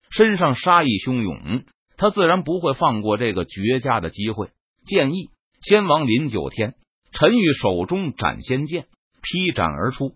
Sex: male